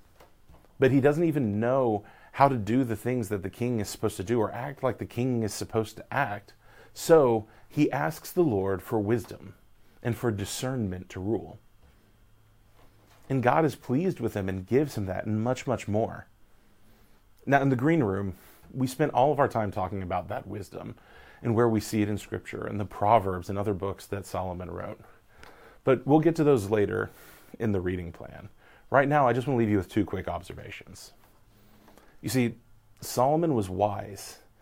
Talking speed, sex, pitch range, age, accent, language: 190 wpm, male, 100-125 Hz, 30-49, American, English